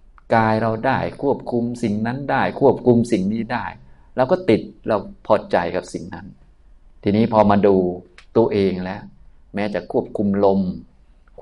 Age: 20-39